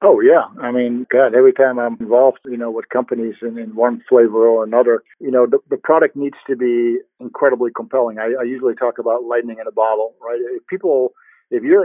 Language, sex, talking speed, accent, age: English, male, 220 wpm, American, 50-69